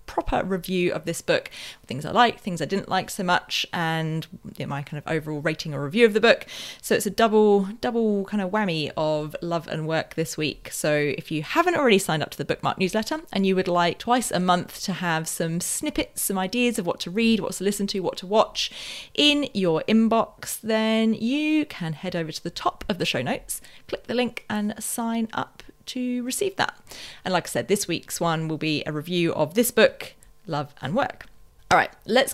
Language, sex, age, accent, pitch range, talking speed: English, female, 30-49, British, 165-230 Hz, 220 wpm